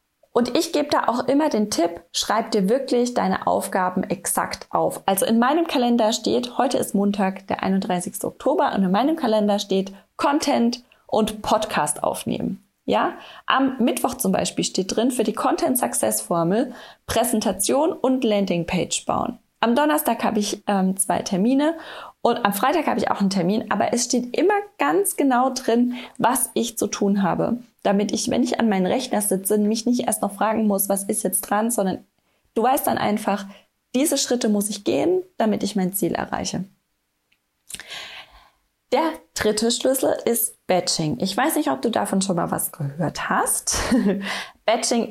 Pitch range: 200-255 Hz